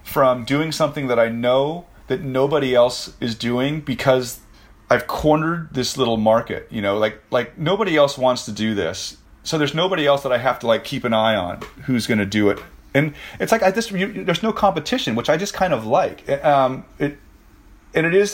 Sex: male